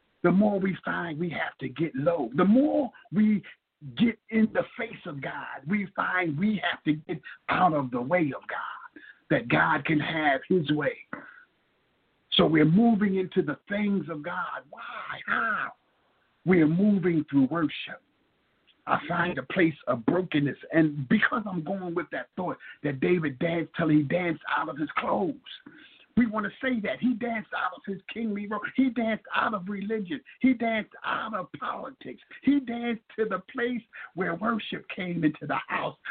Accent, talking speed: American, 175 wpm